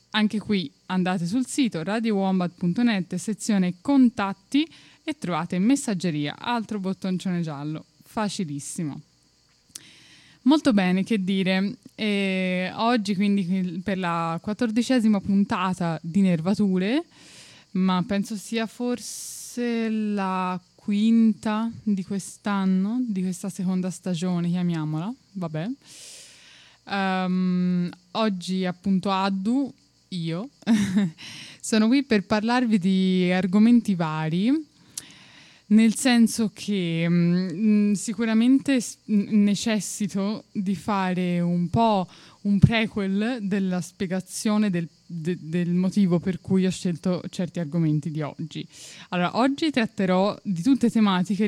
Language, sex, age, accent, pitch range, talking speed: Italian, female, 10-29, native, 180-215 Hz, 100 wpm